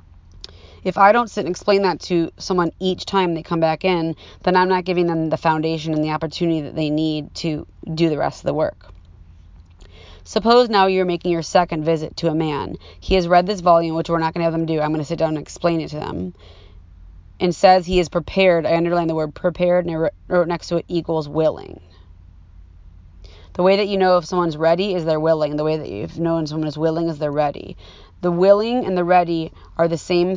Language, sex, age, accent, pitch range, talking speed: English, female, 30-49, American, 150-180 Hz, 230 wpm